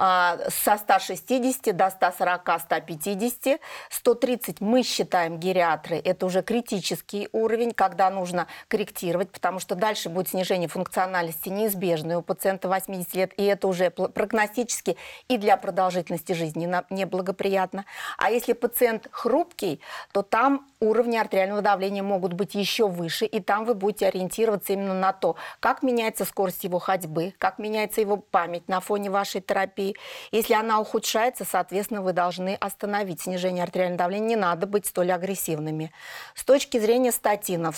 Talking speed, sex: 140 wpm, female